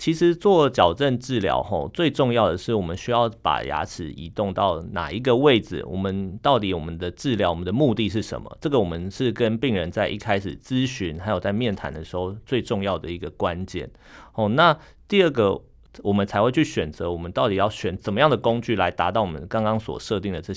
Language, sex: Chinese, male